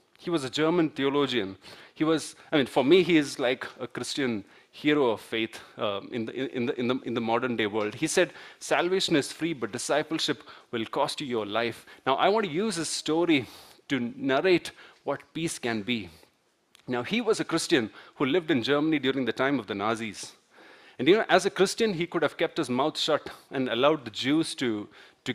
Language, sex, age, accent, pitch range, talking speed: English, male, 30-49, Indian, 125-170 Hz, 210 wpm